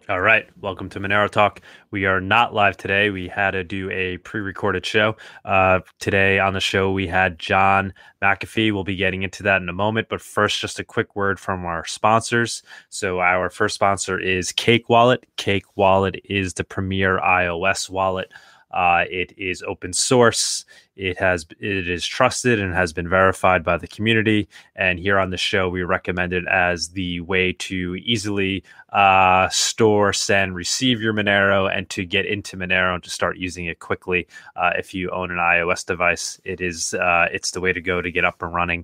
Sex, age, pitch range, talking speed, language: male, 20-39, 90-100 Hz, 190 wpm, English